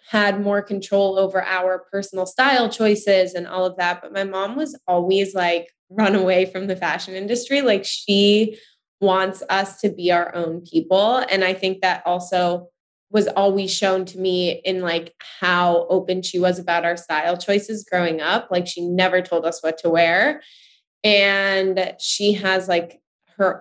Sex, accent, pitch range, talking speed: female, American, 175-205 Hz, 175 wpm